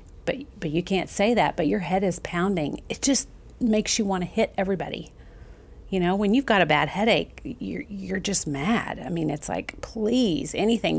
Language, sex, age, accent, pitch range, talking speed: English, female, 40-59, American, 170-215 Hz, 200 wpm